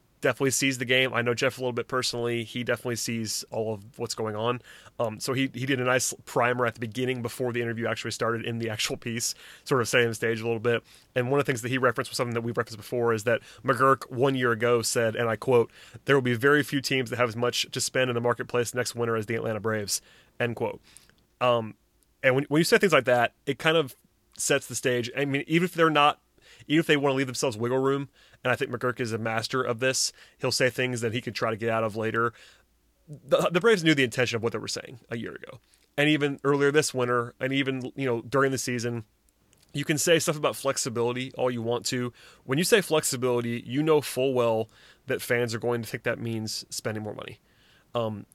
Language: English